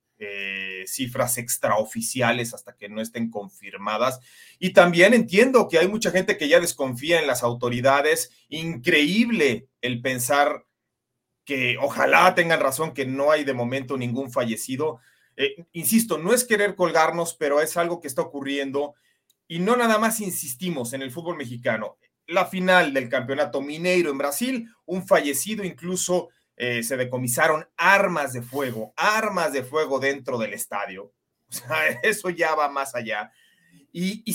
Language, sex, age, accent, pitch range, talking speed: Spanish, male, 40-59, Mexican, 130-180 Hz, 150 wpm